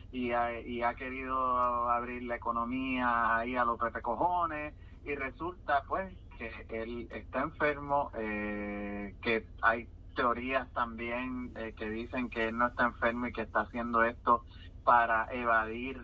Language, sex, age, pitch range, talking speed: Spanish, male, 30-49, 105-120 Hz, 145 wpm